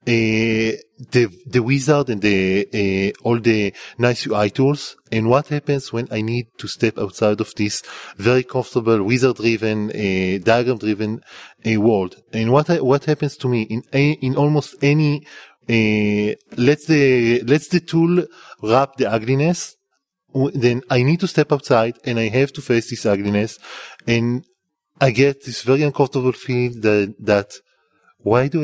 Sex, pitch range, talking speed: male, 115-140 Hz, 155 wpm